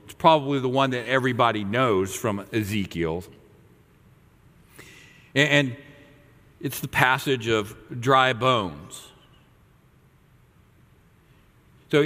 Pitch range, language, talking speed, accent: 115-150 Hz, English, 80 wpm, American